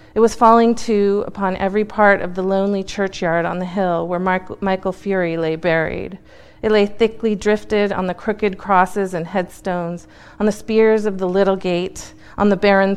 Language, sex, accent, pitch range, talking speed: English, female, American, 185-215 Hz, 180 wpm